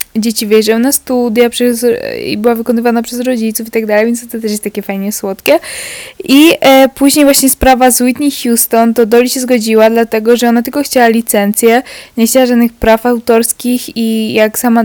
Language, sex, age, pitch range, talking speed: Polish, female, 10-29, 200-235 Hz, 180 wpm